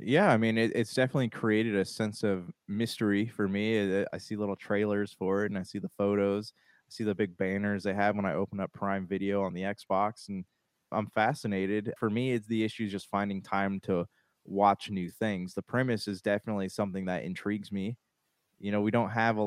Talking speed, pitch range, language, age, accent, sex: 220 wpm, 95-110 Hz, English, 20-39, American, male